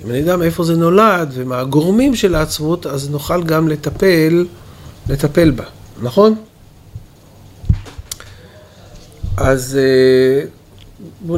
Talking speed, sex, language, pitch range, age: 95 wpm, male, Hebrew, 105-160 Hz, 50-69